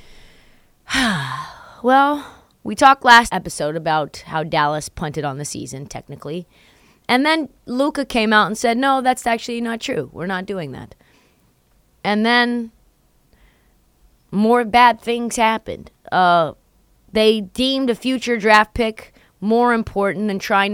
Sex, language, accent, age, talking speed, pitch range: female, English, American, 30-49, 135 wpm, 165-235 Hz